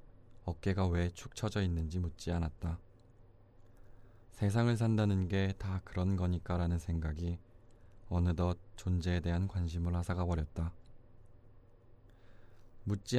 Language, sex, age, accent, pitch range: Korean, male, 20-39, native, 90-110 Hz